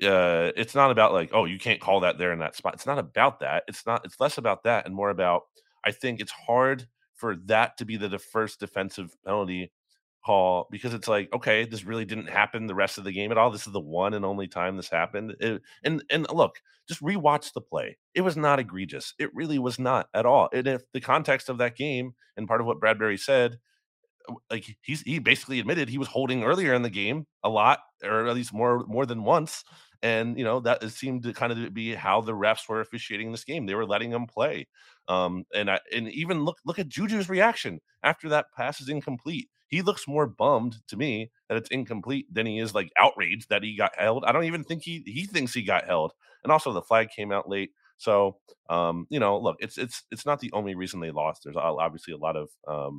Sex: male